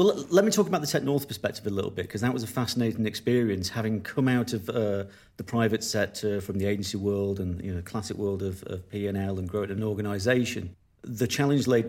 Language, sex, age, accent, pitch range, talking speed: English, male, 40-59, British, 100-120 Hz, 235 wpm